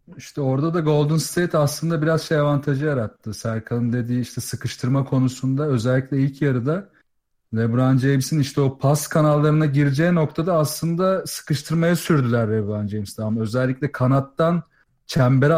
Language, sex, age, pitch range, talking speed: Turkish, male, 40-59, 130-165 Hz, 130 wpm